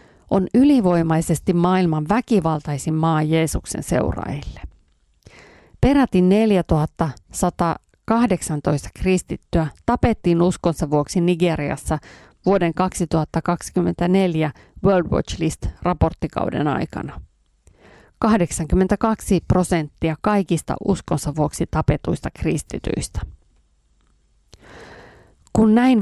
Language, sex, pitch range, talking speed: Finnish, female, 160-200 Hz, 65 wpm